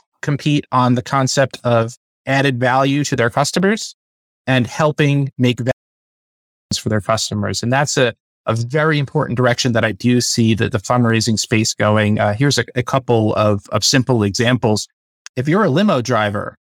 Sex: male